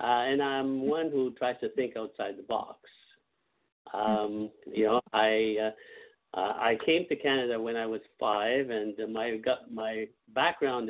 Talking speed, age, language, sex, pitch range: 155 wpm, 50-69, English, male, 110-130 Hz